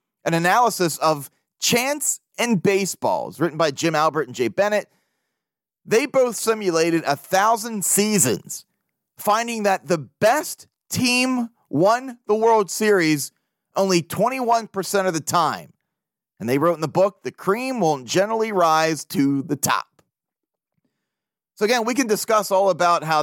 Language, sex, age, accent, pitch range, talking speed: English, male, 30-49, American, 165-225 Hz, 140 wpm